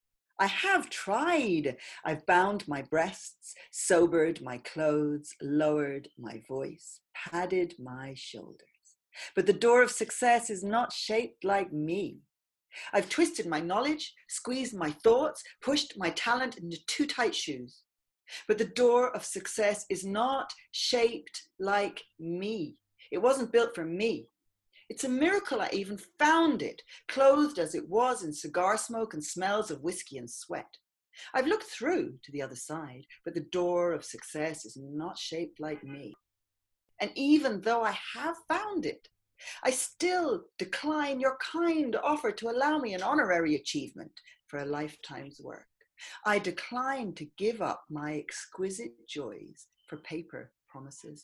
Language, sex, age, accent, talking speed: English, female, 40-59, British, 150 wpm